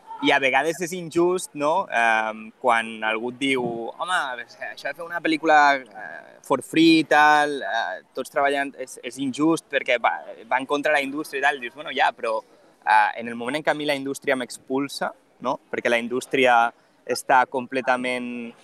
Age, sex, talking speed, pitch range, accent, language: 20-39, male, 185 wpm, 125-175 Hz, Spanish, Spanish